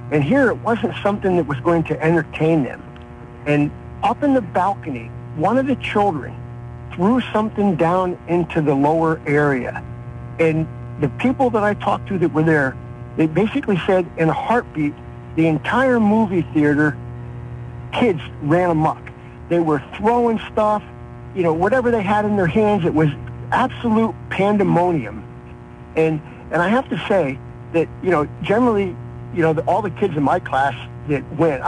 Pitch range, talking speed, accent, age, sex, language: 120-180 Hz, 165 wpm, American, 50-69, male, English